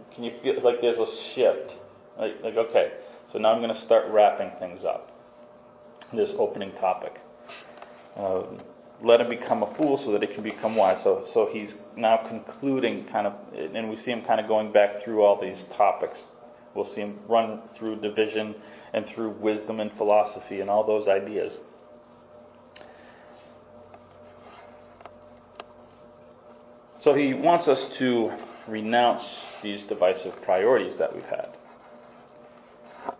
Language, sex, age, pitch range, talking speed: English, male, 30-49, 110-130 Hz, 145 wpm